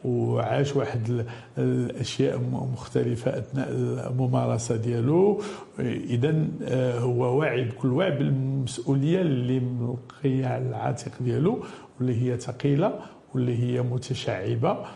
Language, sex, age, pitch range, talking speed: French, male, 50-69, 125-165 Hz, 75 wpm